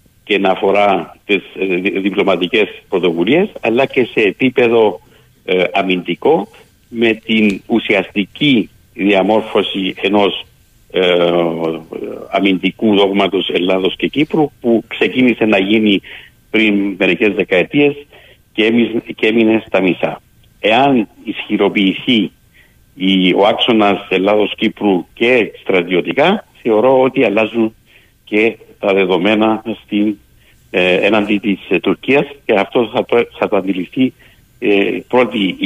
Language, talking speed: Greek, 100 wpm